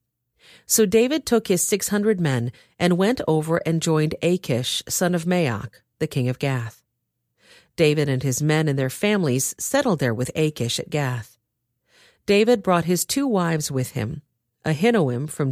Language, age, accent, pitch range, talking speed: English, 40-59, American, 130-190 Hz, 160 wpm